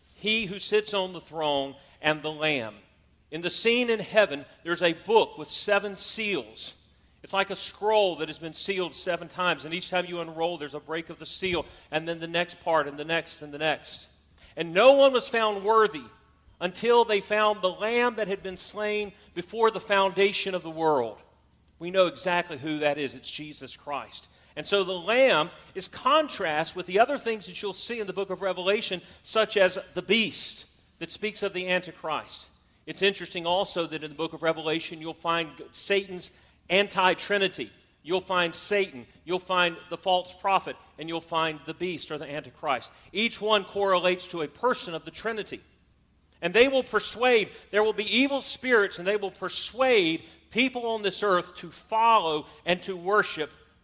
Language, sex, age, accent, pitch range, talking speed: English, male, 40-59, American, 160-205 Hz, 190 wpm